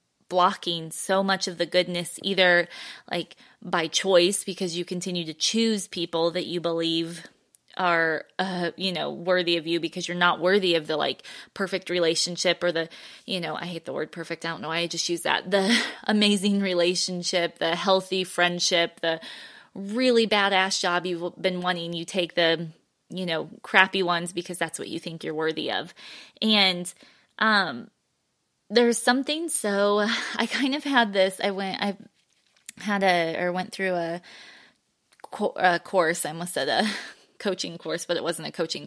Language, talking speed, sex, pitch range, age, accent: English, 170 wpm, female, 170-205 Hz, 20-39, American